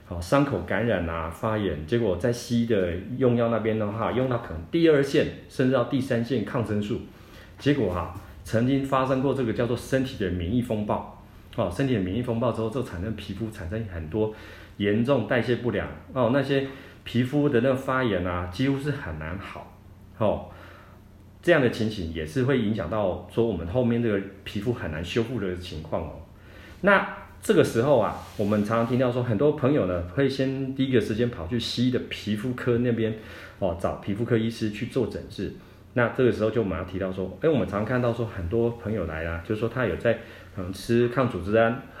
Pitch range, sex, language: 95-125 Hz, male, Chinese